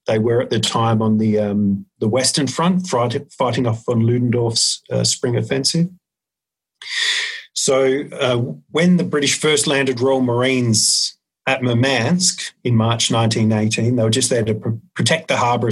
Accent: Australian